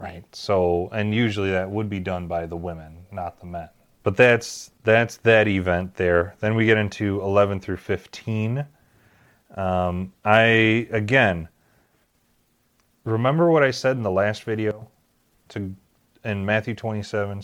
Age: 30-49